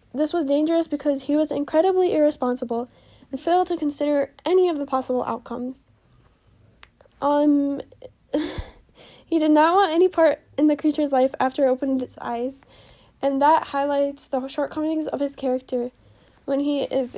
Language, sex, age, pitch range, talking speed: English, female, 10-29, 265-300 Hz, 155 wpm